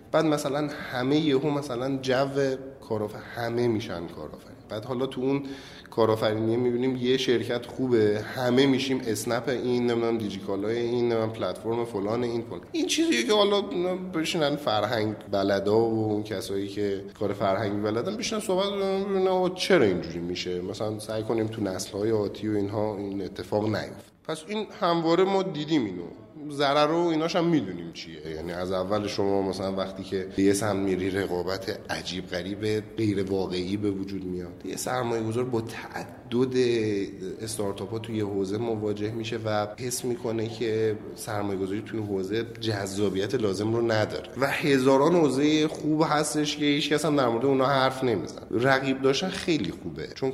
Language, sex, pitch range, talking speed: Persian, male, 100-135 Hz, 155 wpm